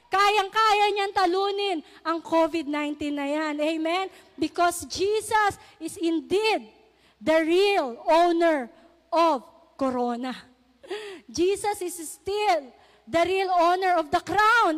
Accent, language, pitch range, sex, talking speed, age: native, Filipino, 325-465 Hz, female, 105 wpm, 20-39